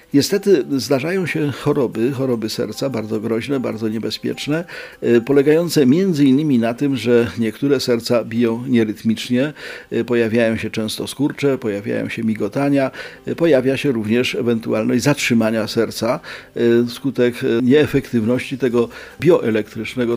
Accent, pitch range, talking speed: native, 115-140 Hz, 105 wpm